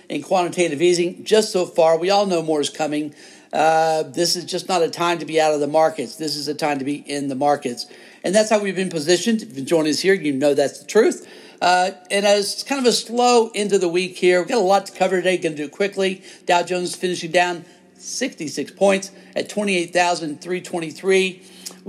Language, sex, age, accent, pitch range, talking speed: English, male, 60-79, American, 155-190 Hz, 220 wpm